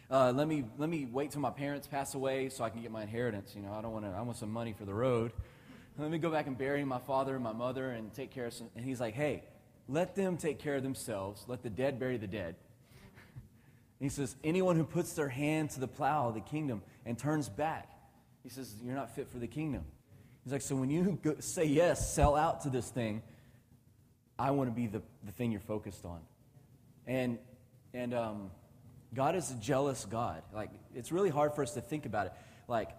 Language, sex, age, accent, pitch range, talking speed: English, male, 30-49, American, 120-140 Hz, 235 wpm